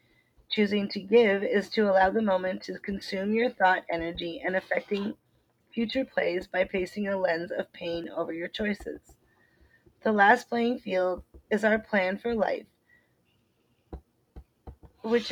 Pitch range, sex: 185-220 Hz, female